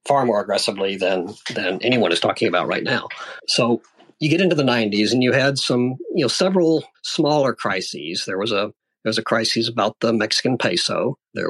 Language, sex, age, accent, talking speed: English, male, 50-69, American, 200 wpm